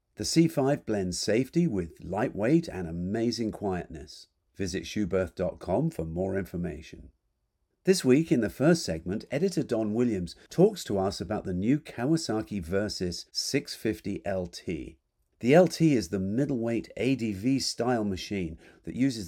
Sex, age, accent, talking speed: male, 50-69, British, 135 wpm